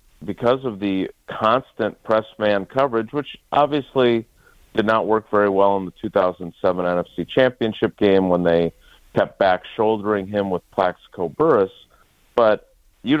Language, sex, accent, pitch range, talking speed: English, male, American, 100-130 Hz, 140 wpm